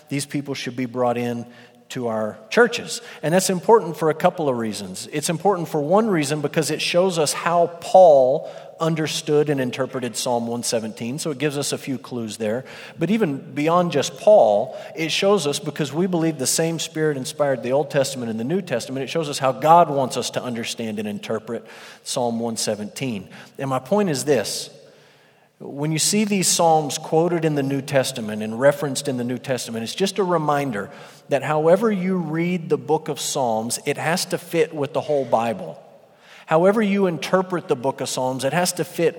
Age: 40-59